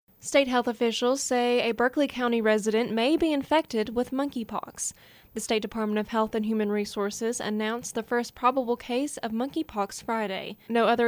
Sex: female